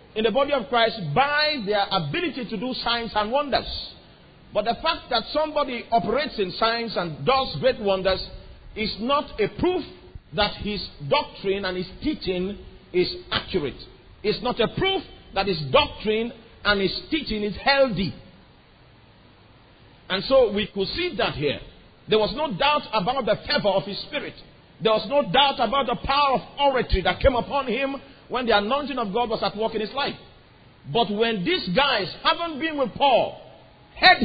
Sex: male